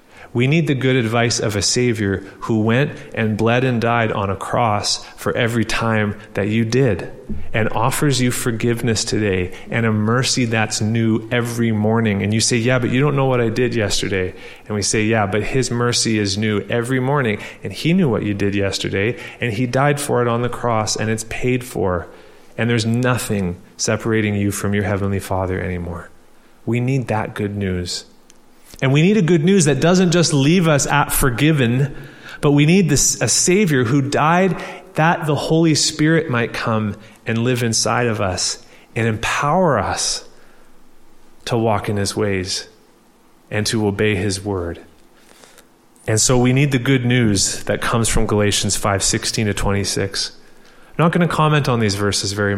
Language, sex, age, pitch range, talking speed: English, male, 30-49, 105-135 Hz, 185 wpm